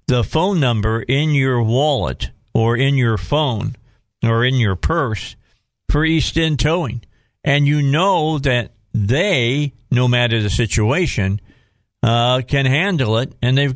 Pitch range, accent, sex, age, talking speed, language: 110-145 Hz, American, male, 50-69, 145 wpm, English